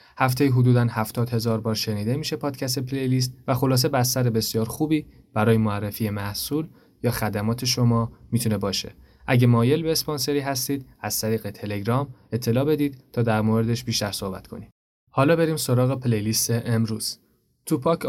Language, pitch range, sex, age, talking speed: Persian, 110-130 Hz, male, 20-39, 150 wpm